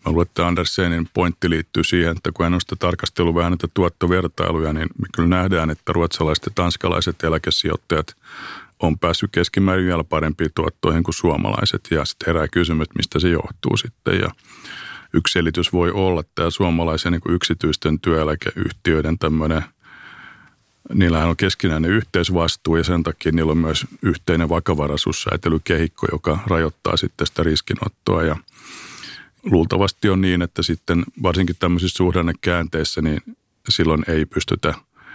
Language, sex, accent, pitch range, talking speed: Finnish, male, native, 80-90 Hz, 135 wpm